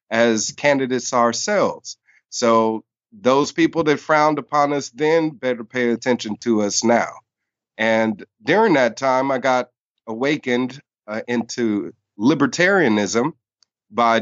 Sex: male